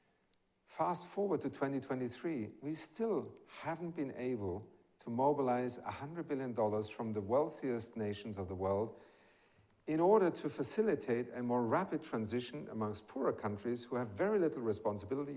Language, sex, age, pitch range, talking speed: English, male, 50-69, 105-145 Hz, 140 wpm